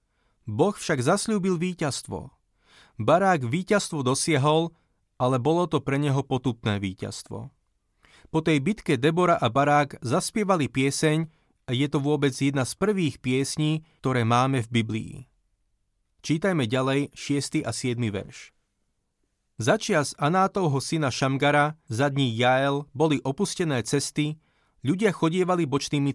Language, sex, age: Slovak, male, 30-49